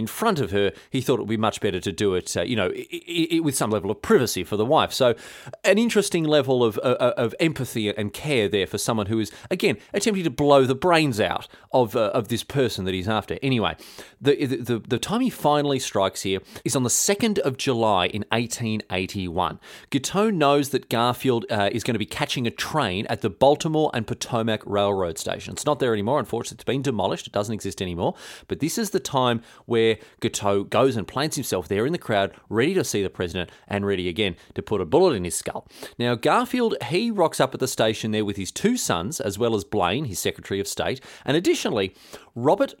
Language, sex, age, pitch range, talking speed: English, male, 30-49, 100-145 Hz, 225 wpm